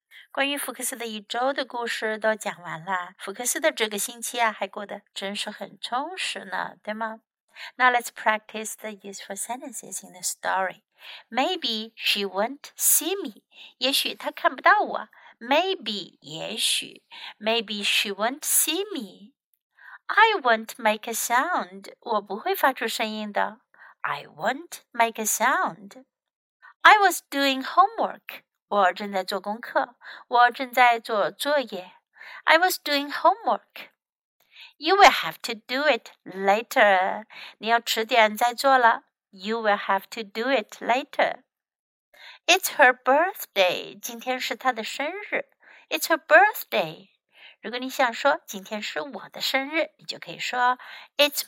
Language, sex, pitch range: Chinese, female, 215-290 Hz